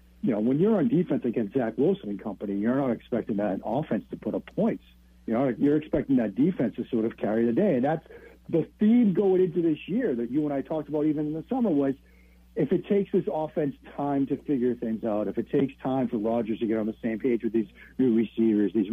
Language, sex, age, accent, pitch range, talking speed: English, male, 60-79, American, 115-170 Hz, 245 wpm